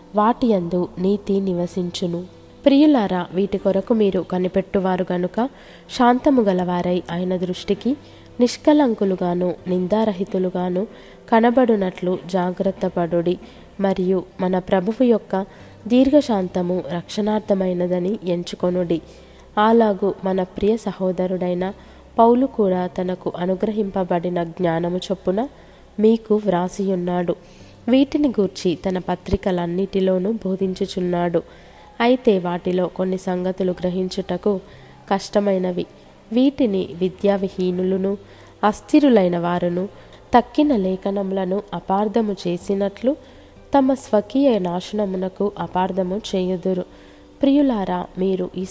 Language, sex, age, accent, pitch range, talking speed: Telugu, female, 20-39, native, 180-210 Hz, 80 wpm